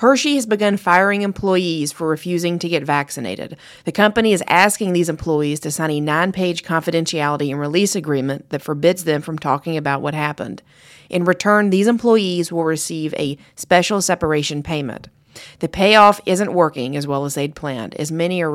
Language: English